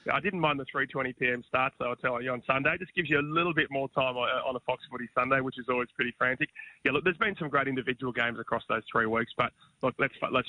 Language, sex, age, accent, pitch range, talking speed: English, male, 30-49, Australian, 120-150 Hz, 270 wpm